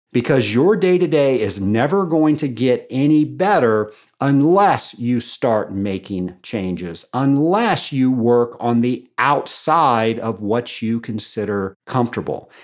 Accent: American